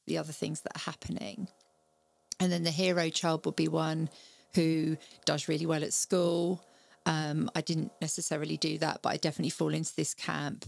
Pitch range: 155-175 Hz